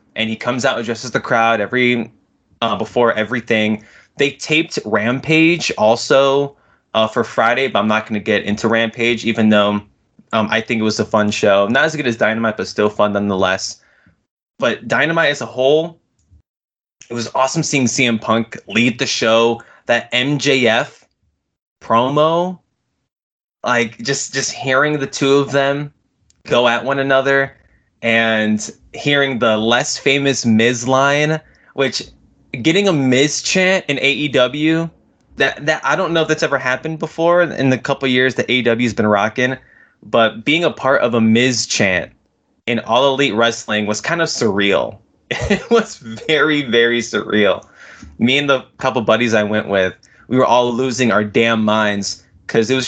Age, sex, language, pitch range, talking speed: 20-39, male, English, 110-140 Hz, 165 wpm